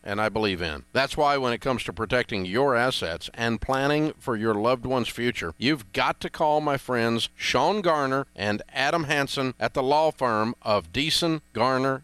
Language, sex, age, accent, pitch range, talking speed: English, male, 50-69, American, 110-155 Hz, 190 wpm